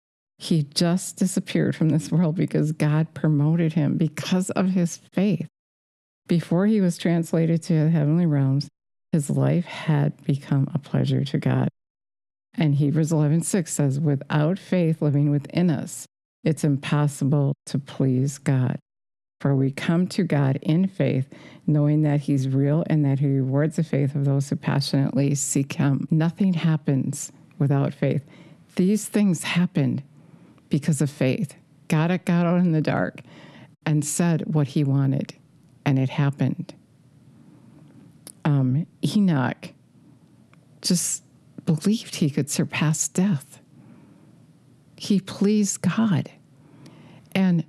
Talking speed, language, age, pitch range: 130 wpm, English, 50-69, 140-175 Hz